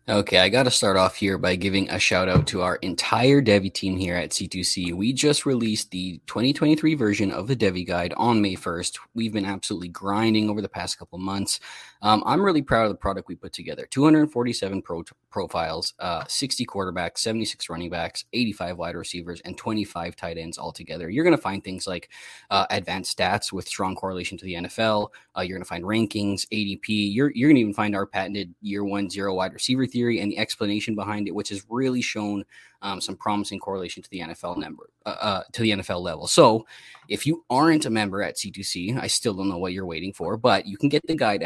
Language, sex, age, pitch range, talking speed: English, male, 20-39, 95-110 Hz, 220 wpm